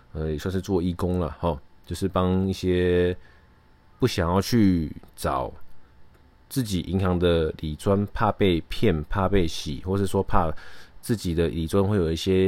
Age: 20-39